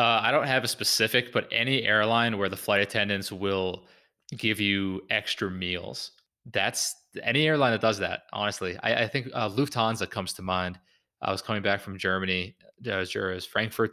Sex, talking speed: male, 185 wpm